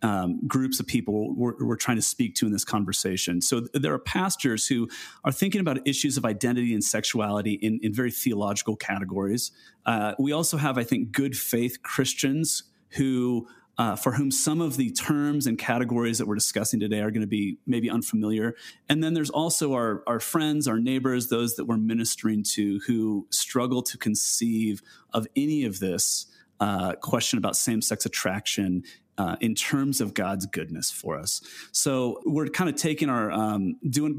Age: 30-49